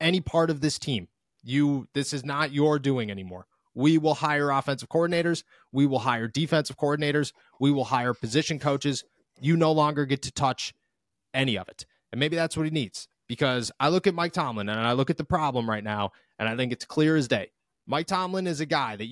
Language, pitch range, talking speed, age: English, 135-175 Hz, 215 wpm, 30-49